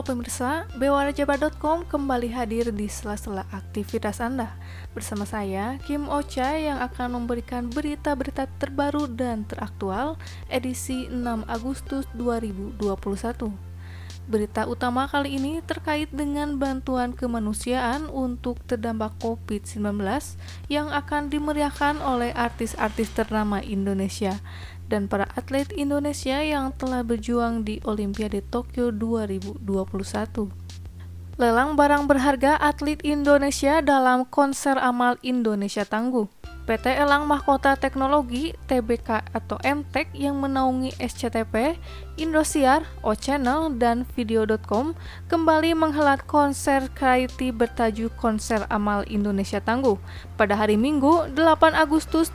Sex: female